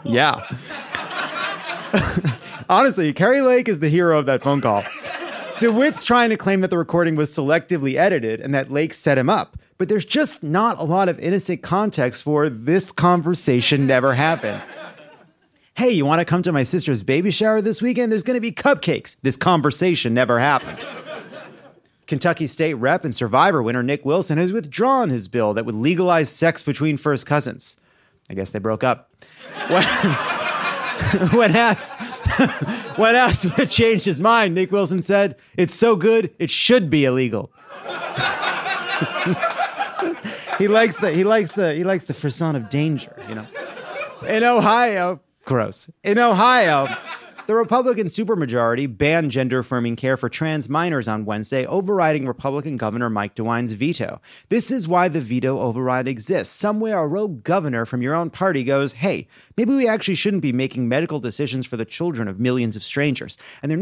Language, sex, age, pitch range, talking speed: English, male, 30-49, 130-200 Hz, 165 wpm